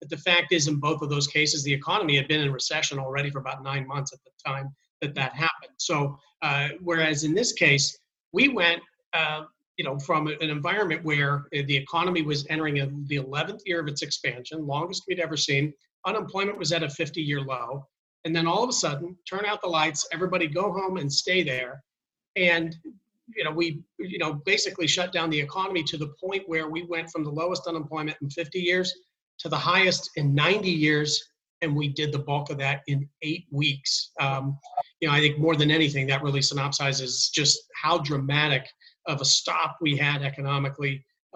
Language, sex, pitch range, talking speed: English, male, 140-165 Hz, 200 wpm